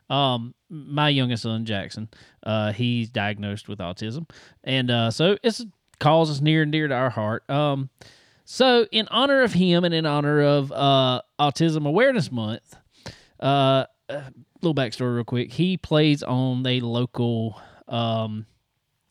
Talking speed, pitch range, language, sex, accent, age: 150 wpm, 120-160 Hz, English, male, American, 20-39